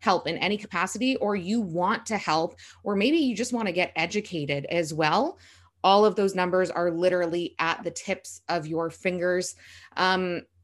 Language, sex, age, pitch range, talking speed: English, female, 20-39, 170-205 Hz, 180 wpm